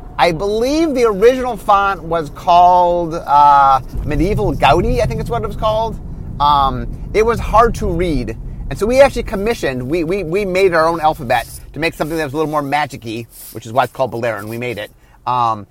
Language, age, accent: English, 30-49, American